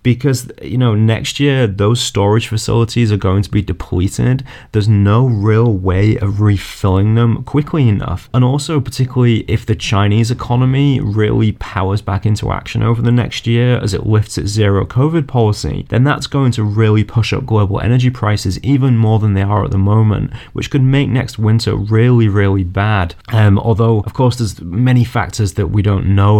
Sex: male